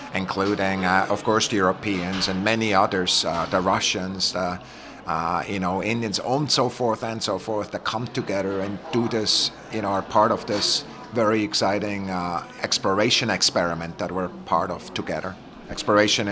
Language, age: English, 30-49